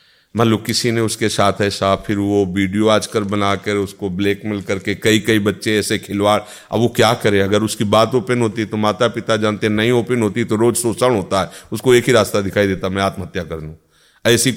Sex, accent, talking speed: male, native, 225 wpm